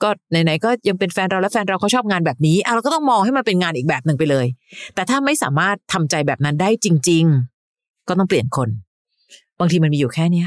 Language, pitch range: Thai, 160-210 Hz